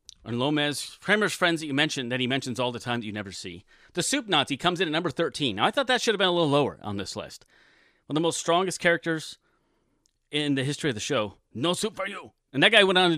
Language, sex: English, male